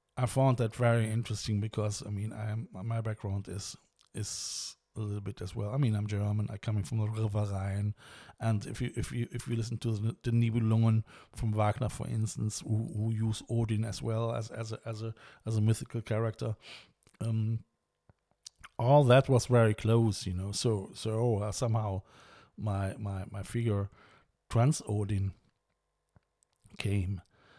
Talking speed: 170 wpm